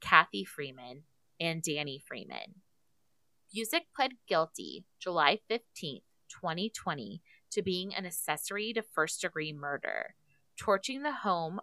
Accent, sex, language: American, female, English